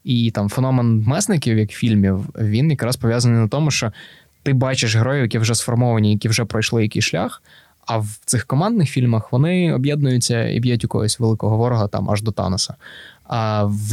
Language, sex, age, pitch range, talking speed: Ukrainian, male, 20-39, 105-125 Hz, 180 wpm